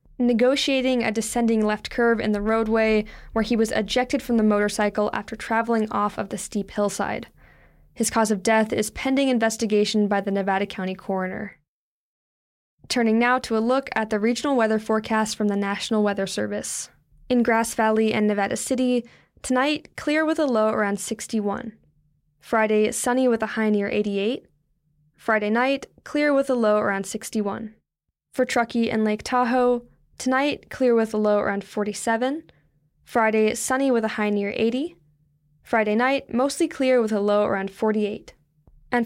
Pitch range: 205-245 Hz